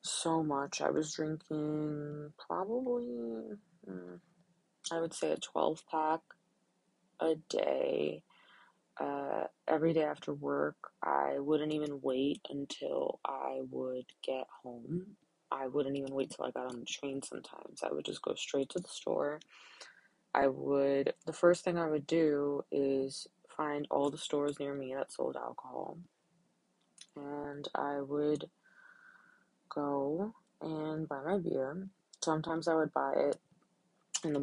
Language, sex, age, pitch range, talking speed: English, female, 20-39, 135-165 Hz, 140 wpm